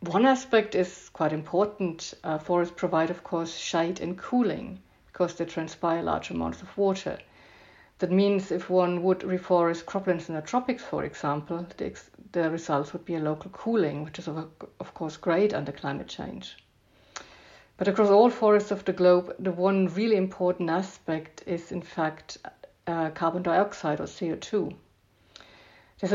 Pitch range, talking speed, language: 165-200 Hz, 165 wpm, English